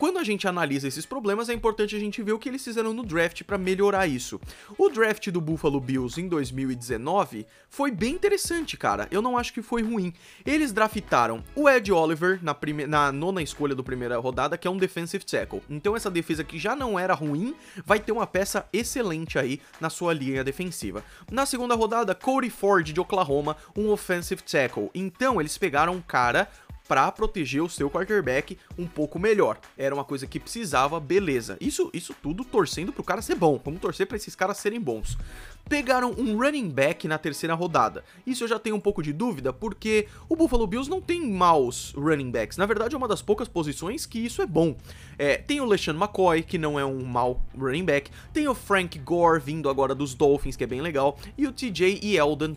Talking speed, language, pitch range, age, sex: 210 wpm, Portuguese, 145-220 Hz, 20-39, male